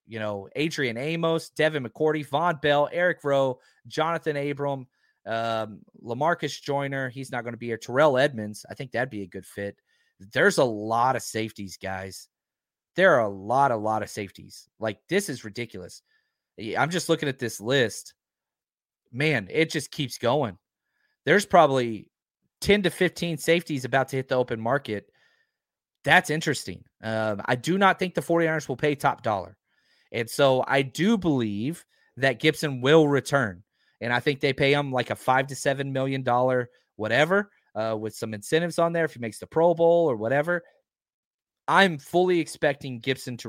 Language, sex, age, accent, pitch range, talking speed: English, male, 30-49, American, 120-155 Hz, 170 wpm